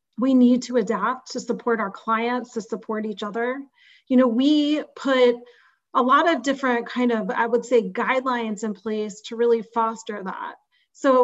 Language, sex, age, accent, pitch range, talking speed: English, female, 30-49, American, 225-260 Hz, 175 wpm